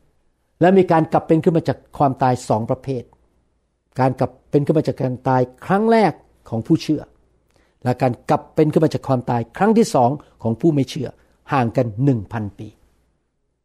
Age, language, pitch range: 60-79, Thai, 110-155 Hz